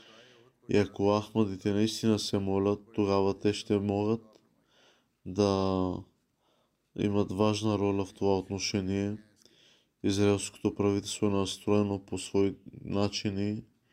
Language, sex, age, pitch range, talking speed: Bulgarian, male, 20-39, 100-105 Hz, 105 wpm